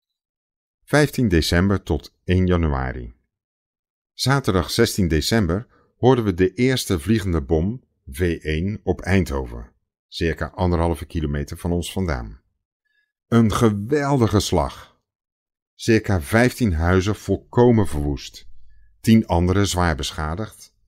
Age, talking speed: 50-69, 100 wpm